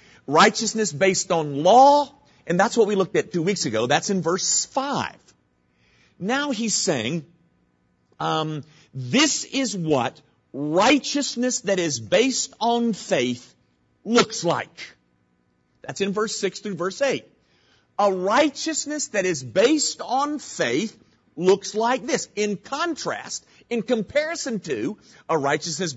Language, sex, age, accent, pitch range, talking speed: English, male, 50-69, American, 150-220 Hz, 130 wpm